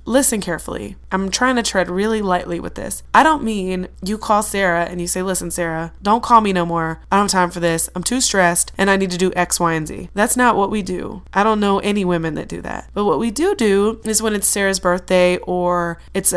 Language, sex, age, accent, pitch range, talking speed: English, female, 20-39, American, 175-215 Hz, 255 wpm